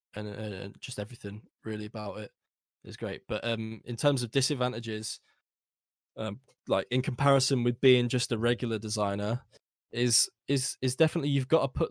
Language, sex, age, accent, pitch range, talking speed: English, male, 10-29, British, 105-125 Hz, 165 wpm